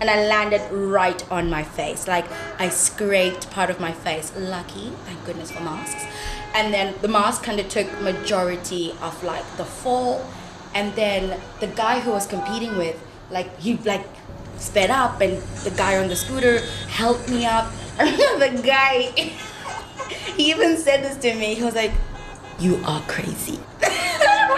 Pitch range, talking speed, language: 180-260 Hz, 170 wpm, English